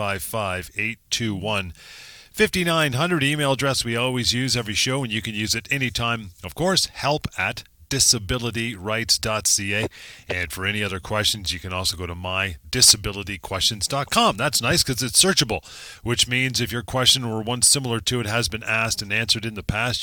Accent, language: American, English